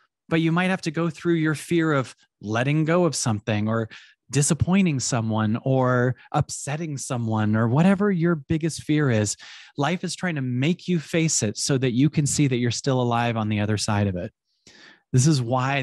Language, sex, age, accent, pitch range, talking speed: English, male, 30-49, American, 130-175 Hz, 195 wpm